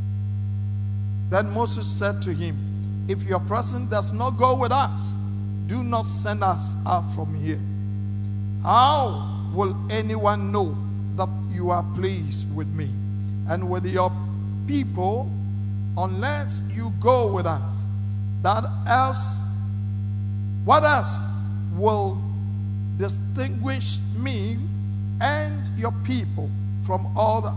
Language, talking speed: English, 115 wpm